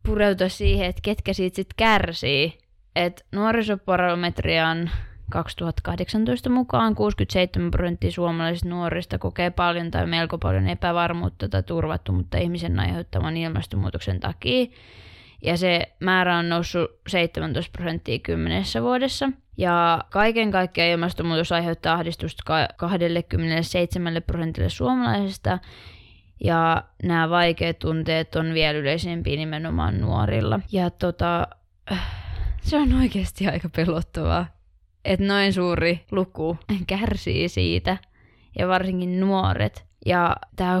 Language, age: Finnish, 20-39